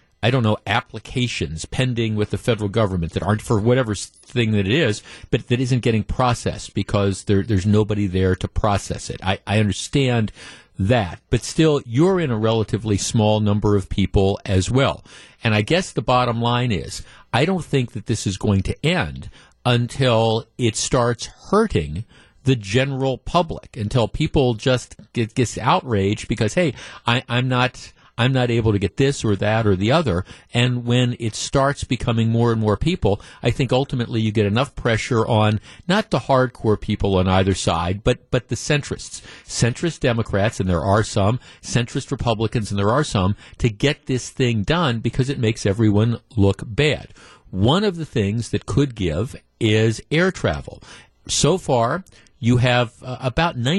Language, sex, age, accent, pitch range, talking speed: English, male, 50-69, American, 105-130 Hz, 170 wpm